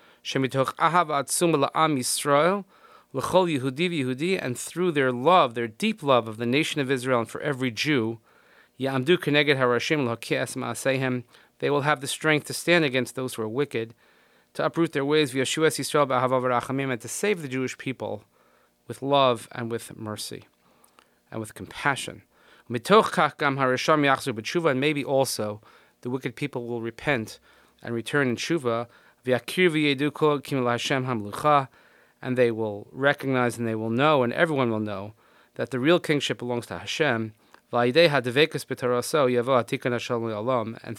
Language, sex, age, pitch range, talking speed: English, male, 30-49, 120-145 Hz, 115 wpm